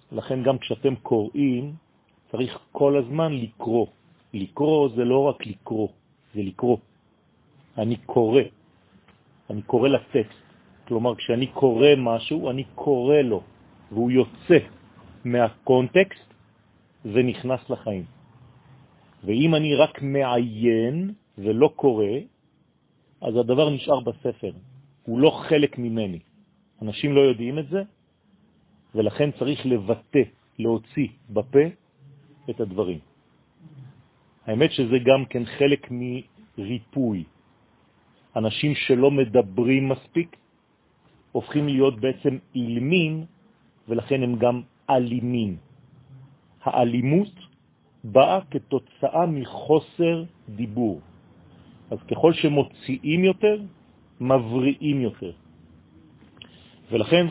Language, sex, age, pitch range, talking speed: French, male, 40-59, 115-145 Hz, 90 wpm